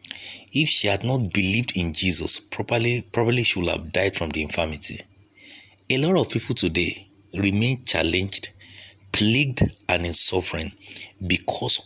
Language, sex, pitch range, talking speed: English, male, 95-115 Hz, 140 wpm